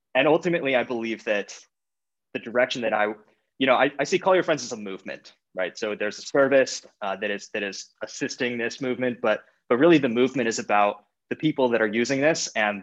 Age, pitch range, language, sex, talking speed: 20-39, 105-130 Hz, English, male, 220 wpm